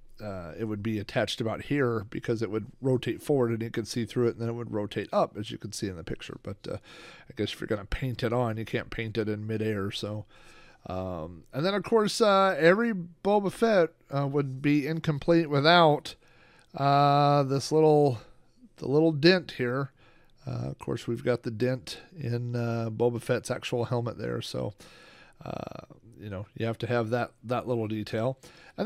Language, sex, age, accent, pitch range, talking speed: English, male, 40-59, American, 110-155 Hz, 200 wpm